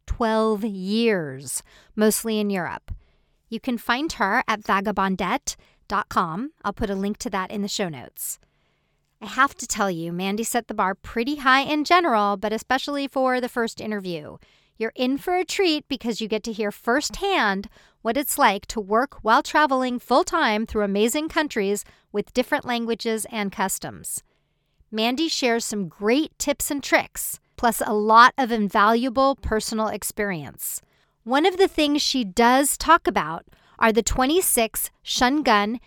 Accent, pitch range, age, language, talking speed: American, 210-270 Hz, 40-59, English, 155 wpm